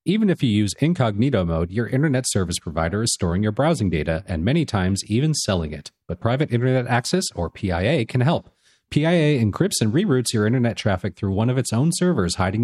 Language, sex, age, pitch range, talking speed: English, male, 40-59, 95-135 Hz, 205 wpm